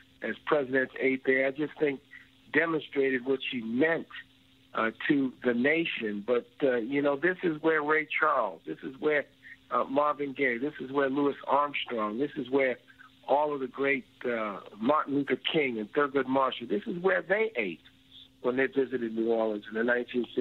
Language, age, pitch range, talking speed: English, 60-79, 120-145 Hz, 190 wpm